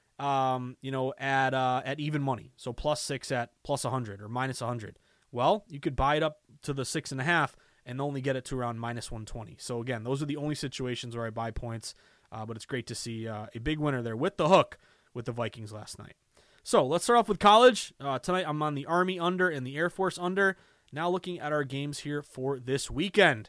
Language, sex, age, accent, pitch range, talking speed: English, male, 20-39, American, 125-160 Hz, 250 wpm